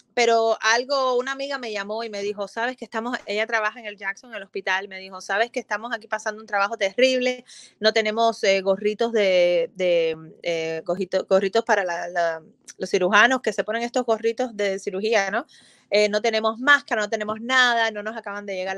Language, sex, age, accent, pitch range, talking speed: English, female, 20-39, American, 205-245 Hz, 205 wpm